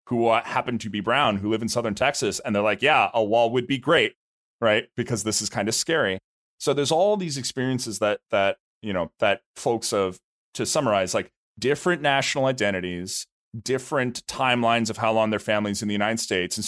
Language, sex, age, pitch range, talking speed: English, male, 30-49, 105-125 Hz, 200 wpm